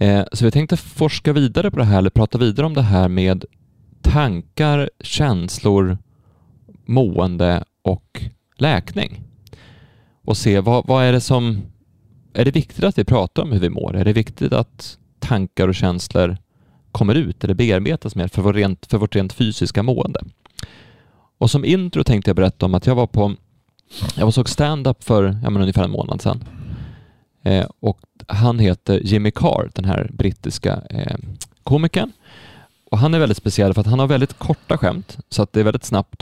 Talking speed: 170 wpm